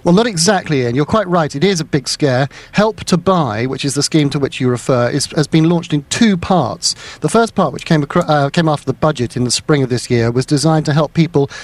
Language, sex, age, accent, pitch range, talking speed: English, male, 40-59, British, 130-165 Hz, 270 wpm